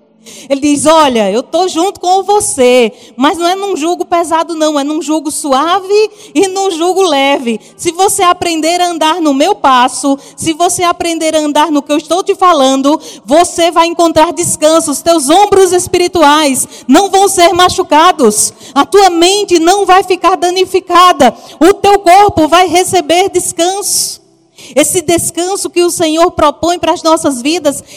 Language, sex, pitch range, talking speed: Portuguese, female, 275-345 Hz, 165 wpm